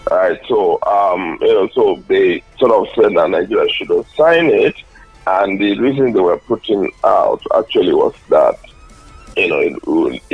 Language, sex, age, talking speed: English, male, 50-69, 175 wpm